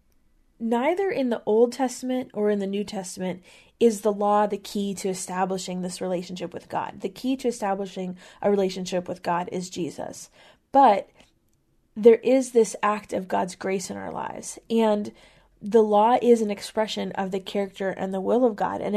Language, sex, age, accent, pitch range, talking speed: English, female, 20-39, American, 195-225 Hz, 180 wpm